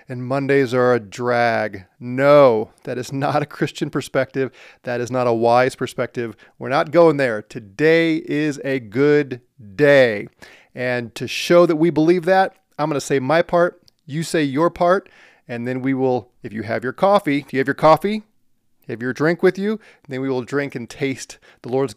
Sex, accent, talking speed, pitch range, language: male, American, 195 wpm, 130-170 Hz, English